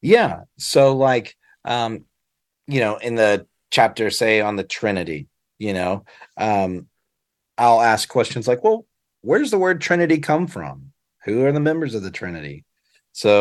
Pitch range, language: 95-135 Hz, English